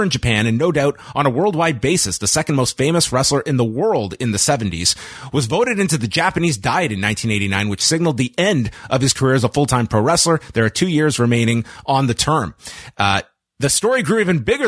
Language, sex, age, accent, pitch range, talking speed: English, male, 30-49, American, 120-165 Hz, 220 wpm